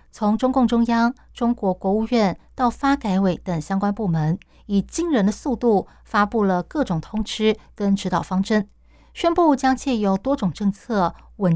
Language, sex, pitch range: Chinese, female, 185-235 Hz